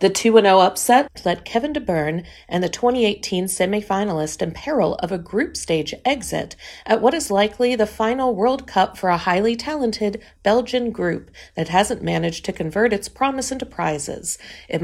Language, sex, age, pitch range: Chinese, female, 40-59, 175-245 Hz